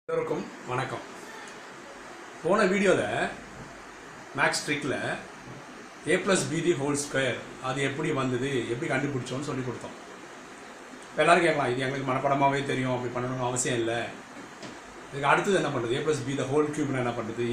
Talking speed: 135 wpm